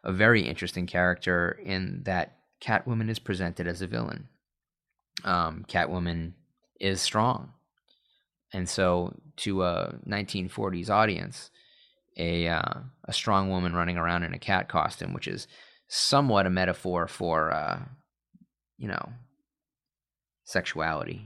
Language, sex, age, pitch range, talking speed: English, male, 30-49, 85-110 Hz, 120 wpm